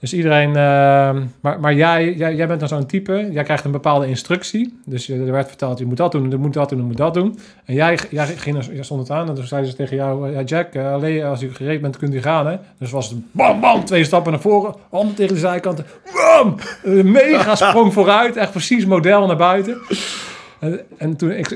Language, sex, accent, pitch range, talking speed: Dutch, male, Dutch, 135-165 Hz, 240 wpm